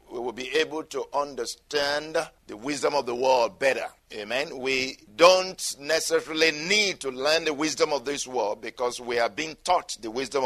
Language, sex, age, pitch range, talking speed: English, male, 50-69, 125-165 Hz, 180 wpm